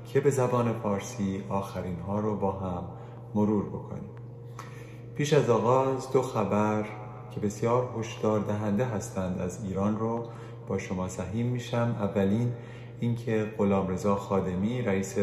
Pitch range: 100-120 Hz